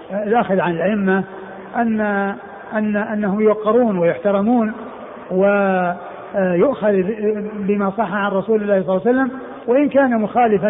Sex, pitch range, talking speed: male, 195-230 Hz, 110 wpm